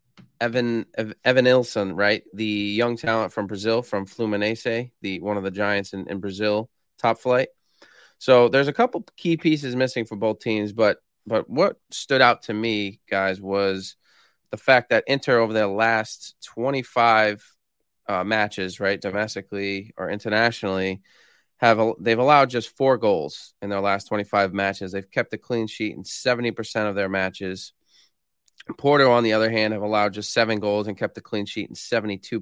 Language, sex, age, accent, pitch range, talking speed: English, male, 20-39, American, 100-120 Hz, 175 wpm